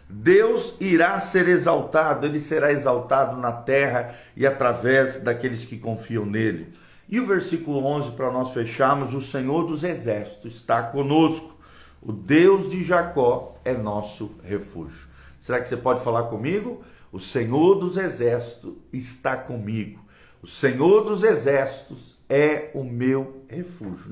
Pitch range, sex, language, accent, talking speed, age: 120-170 Hz, male, Portuguese, Brazilian, 135 wpm, 50-69